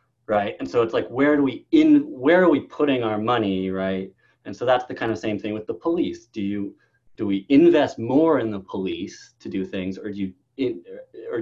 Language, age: English, 30-49